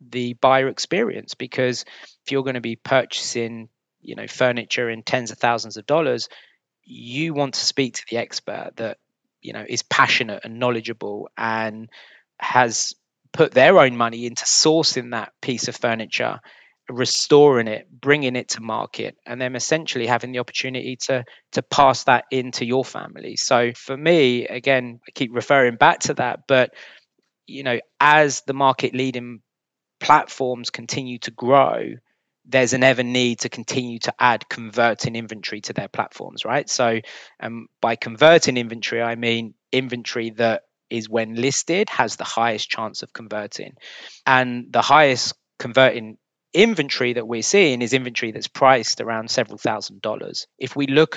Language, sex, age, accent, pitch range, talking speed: English, male, 20-39, British, 115-130 Hz, 160 wpm